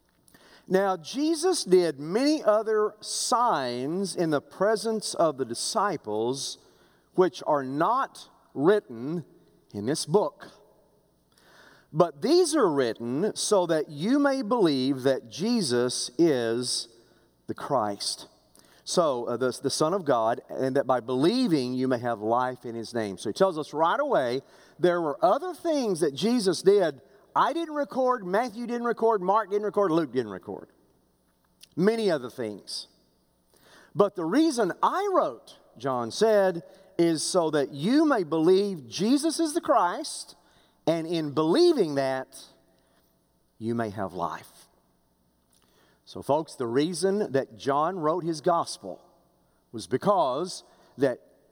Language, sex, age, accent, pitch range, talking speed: English, male, 40-59, American, 130-215 Hz, 135 wpm